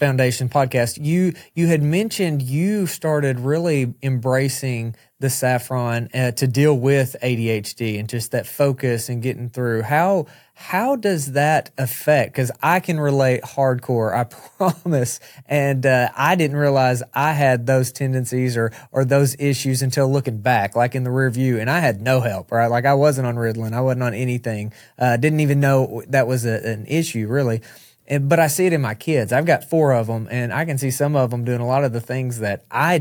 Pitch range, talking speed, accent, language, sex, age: 125-150 Hz, 200 wpm, American, English, male, 20-39